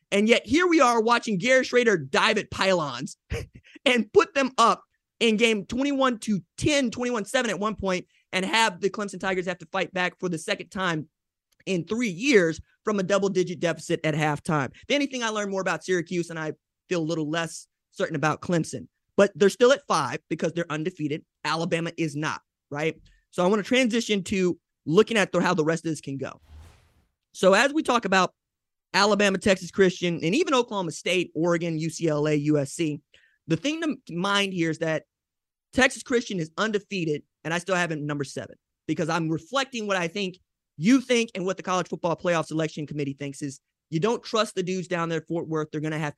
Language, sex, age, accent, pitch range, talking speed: English, male, 20-39, American, 160-215 Hz, 200 wpm